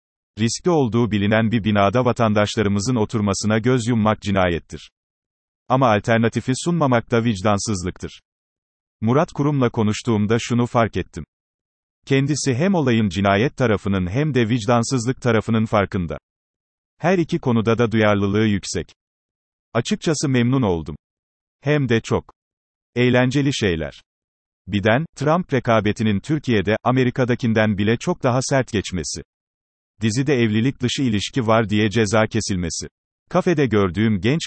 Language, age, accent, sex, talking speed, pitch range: Turkish, 40-59, native, male, 115 wpm, 100-130 Hz